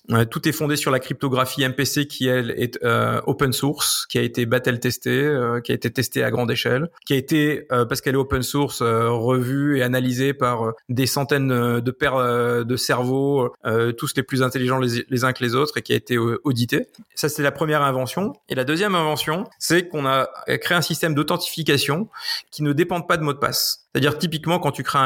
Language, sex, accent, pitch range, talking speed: French, male, French, 125-150 Hz, 220 wpm